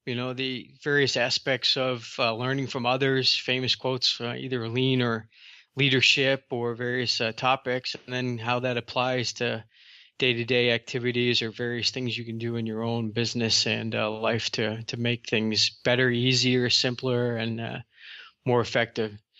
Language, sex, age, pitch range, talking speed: English, male, 20-39, 120-140 Hz, 165 wpm